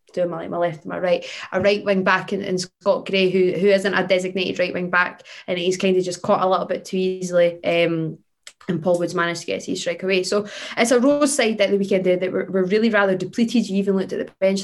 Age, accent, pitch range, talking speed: 20-39, British, 185-220 Hz, 260 wpm